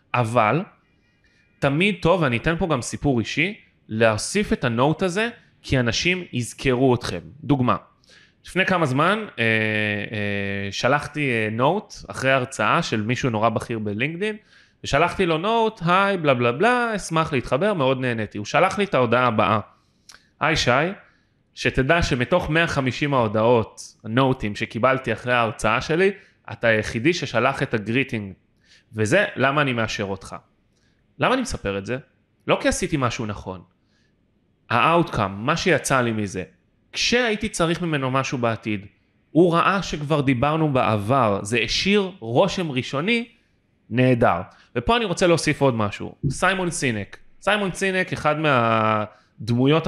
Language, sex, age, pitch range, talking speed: Hebrew, male, 20-39, 110-165 Hz, 135 wpm